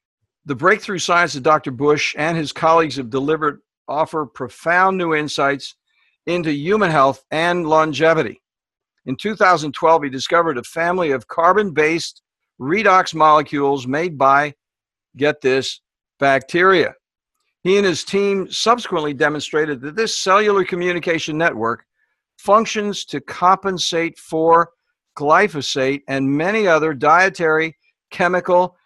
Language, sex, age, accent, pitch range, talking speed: English, male, 60-79, American, 140-175 Hz, 115 wpm